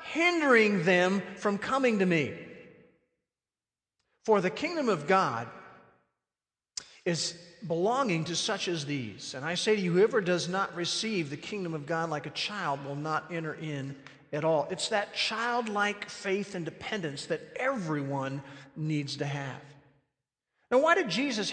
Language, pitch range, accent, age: English, 160-225 Hz, American, 50-69